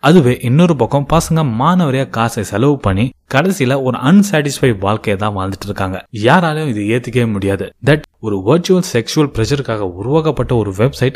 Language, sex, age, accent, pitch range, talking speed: Tamil, male, 20-39, native, 110-150 Hz, 135 wpm